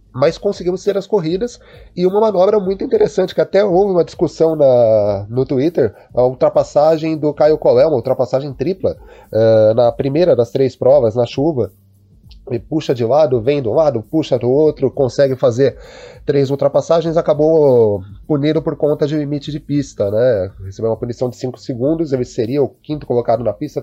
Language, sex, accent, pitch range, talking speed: Portuguese, male, Brazilian, 115-150 Hz, 175 wpm